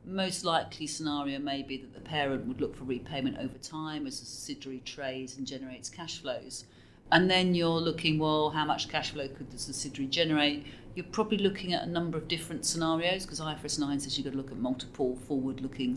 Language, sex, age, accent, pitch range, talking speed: English, female, 40-59, British, 130-160 Hz, 205 wpm